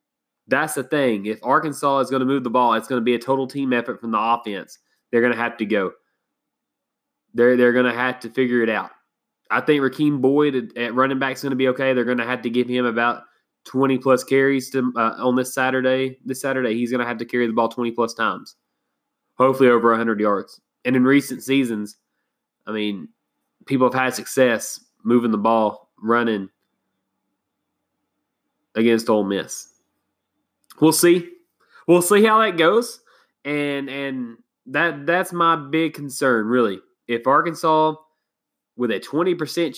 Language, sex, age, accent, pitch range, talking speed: English, male, 20-39, American, 120-145 Hz, 175 wpm